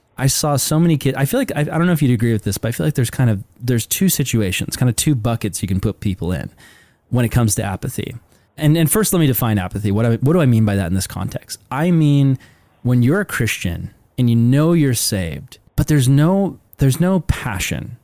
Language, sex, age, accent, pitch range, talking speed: English, male, 20-39, American, 110-140 Hz, 250 wpm